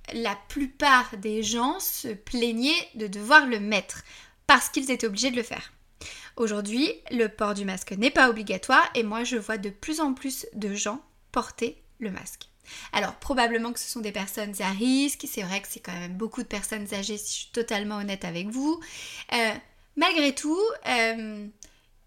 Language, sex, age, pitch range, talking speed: French, female, 20-39, 220-280 Hz, 185 wpm